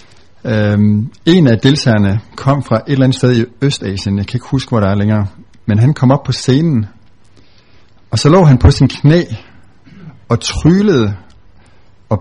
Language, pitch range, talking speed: Danish, 110-140 Hz, 175 wpm